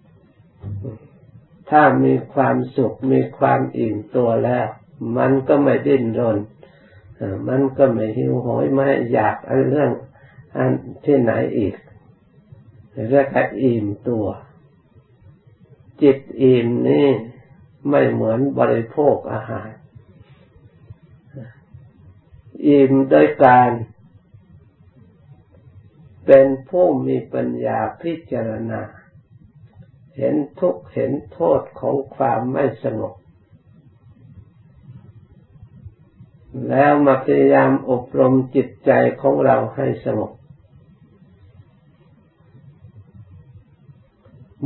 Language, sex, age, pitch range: Thai, male, 60-79, 105-135 Hz